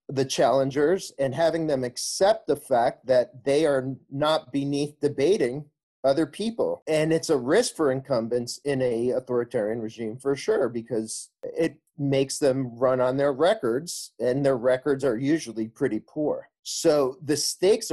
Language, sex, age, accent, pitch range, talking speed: English, male, 40-59, American, 120-150 Hz, 155 wpm